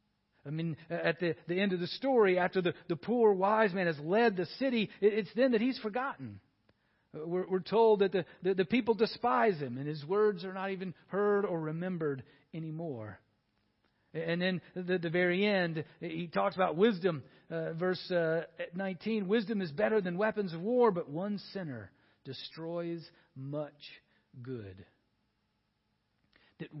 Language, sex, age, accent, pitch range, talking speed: English, male, 50-69, American, 145-210 Hz, 165 wpm